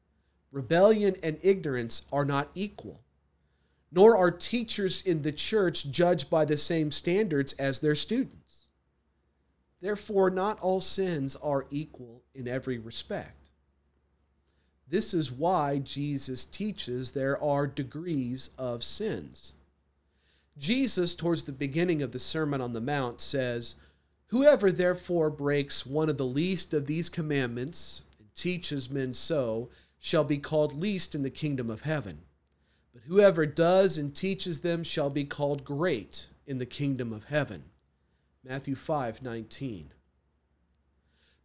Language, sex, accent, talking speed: English, male, American, 130 wpm